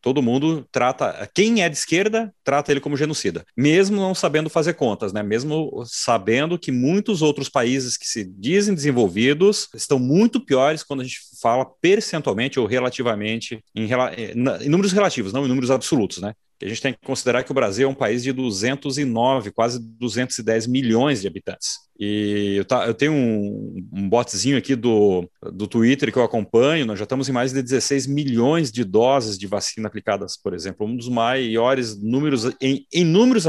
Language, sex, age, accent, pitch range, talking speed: Portuguese, male, 30-49, Brazilian, 115-150 Hz, 180 wpm